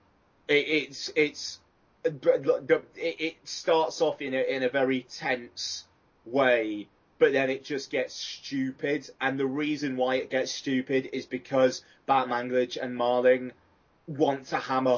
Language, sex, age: English, male, 20-39